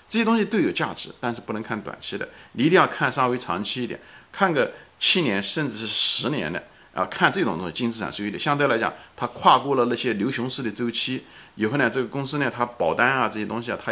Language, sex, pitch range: Chinese, male, 100-130 Hz